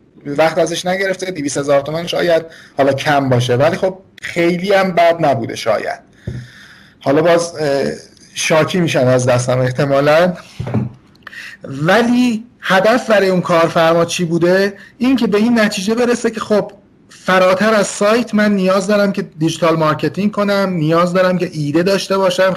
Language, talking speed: Persian, 145 wpm